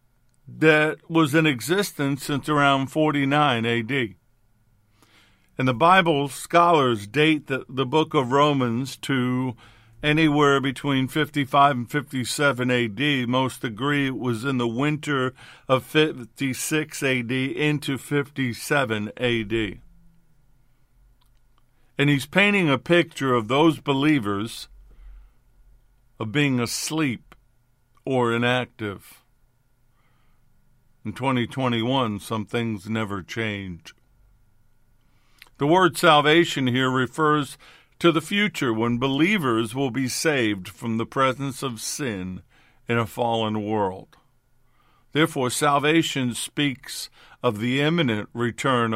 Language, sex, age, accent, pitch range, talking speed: English, male, 50-69, American, 115-145 Hz, 105 wpm